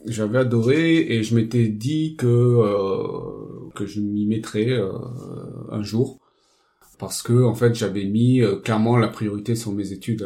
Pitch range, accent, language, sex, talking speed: 105-130 Hz, French, French, male, 160 wpm